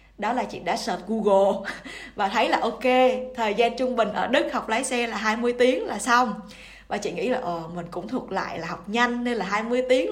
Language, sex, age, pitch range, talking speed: Vietnamese, female, 20-39, 195-245 Hz, 230 wpm